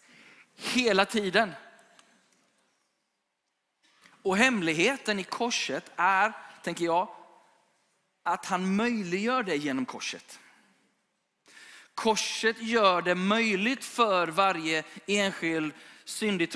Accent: native